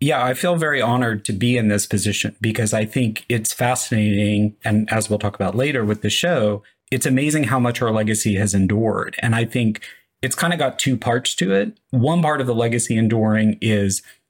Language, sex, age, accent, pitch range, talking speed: English, male, 30-49, American, 105-125 Hz, 210 wpm